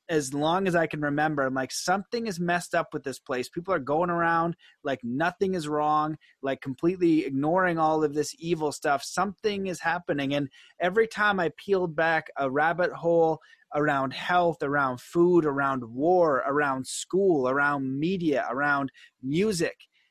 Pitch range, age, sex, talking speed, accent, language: 150-180 Hz, 30-49, male, 165 wpm, American, English